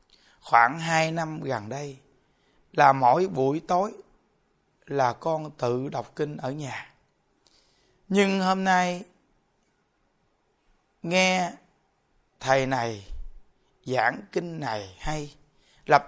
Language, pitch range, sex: Vietnamese, 135-175 Hz, male